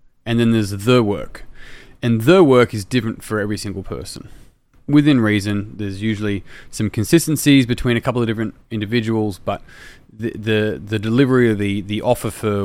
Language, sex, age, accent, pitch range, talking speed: English, male, 20-39, Australian, 100-120 Hz, 170 wpm